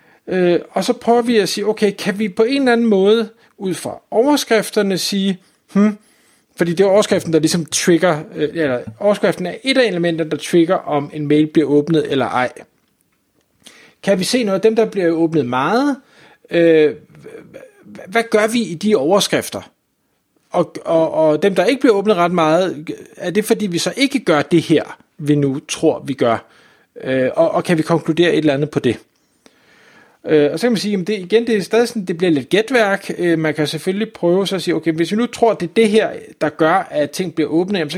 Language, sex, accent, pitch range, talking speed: Danish, male, native, 155-210 Hz, 200 wpm